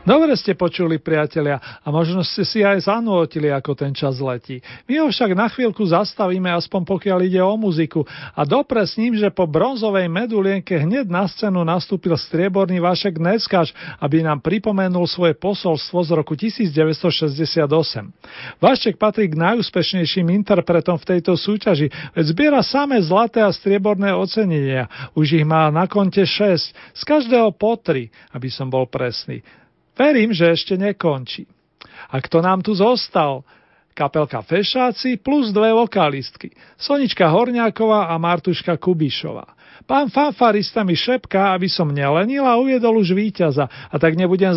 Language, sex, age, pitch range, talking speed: Slovak, male, 40-59, 160-210 Hz, 150 wpm